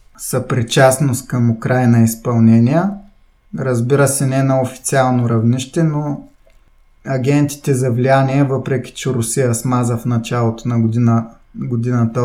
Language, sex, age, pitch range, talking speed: Bulgarian, male, 20-39, 115-135 Hz, 115 wpm